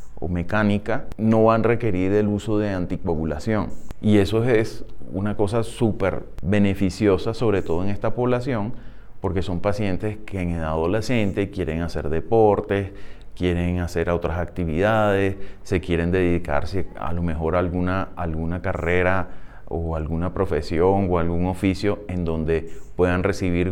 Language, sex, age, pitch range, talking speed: Spanish, male, 30-49, 90-110 Hz, 140 wpm